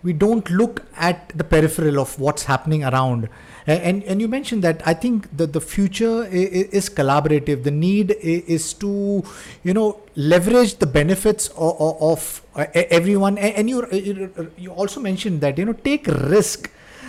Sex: male